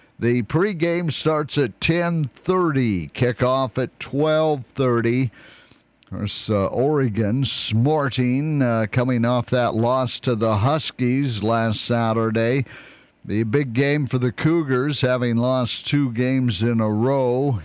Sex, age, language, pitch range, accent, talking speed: male, 50-69, English, 110-135 Hz, American, 120 wpm